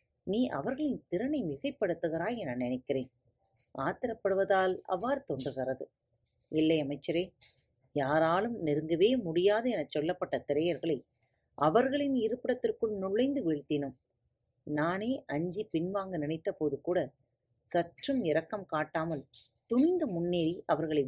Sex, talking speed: female, 90 wpm